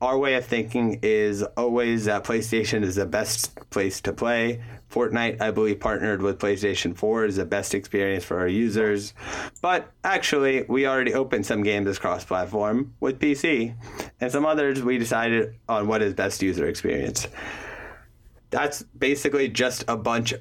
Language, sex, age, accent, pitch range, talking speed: English, male, 30-49, American, 100-120 Hz, 160 wpm